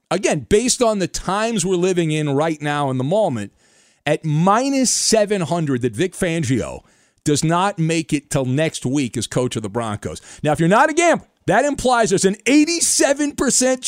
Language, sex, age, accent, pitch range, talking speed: English, male, 40-59, American, 150-225 Hz, 180 wpm